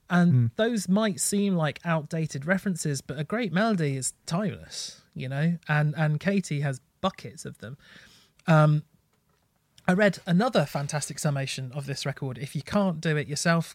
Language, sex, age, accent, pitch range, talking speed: English, male, 30-49, British, 140-165 Hz, 160 wpm